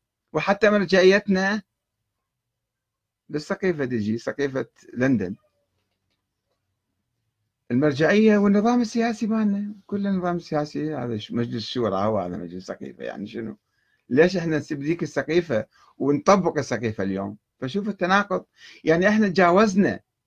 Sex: male